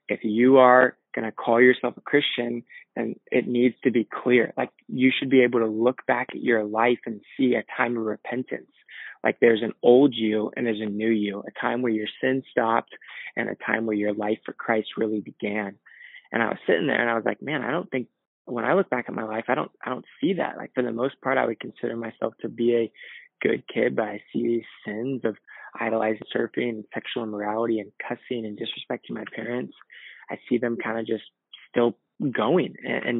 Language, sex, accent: English, male, American